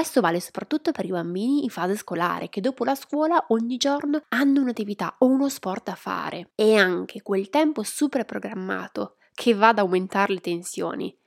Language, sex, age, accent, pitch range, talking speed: Italian, female, 20-39, native, 185-260 Hz, 180 wpm